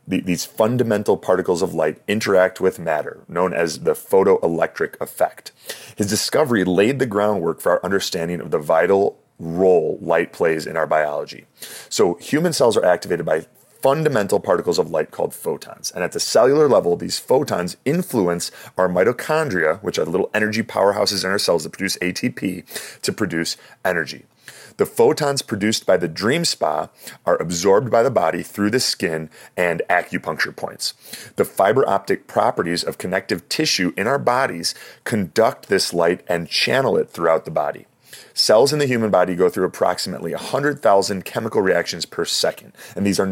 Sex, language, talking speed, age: male, English, 165 wpm, 30-49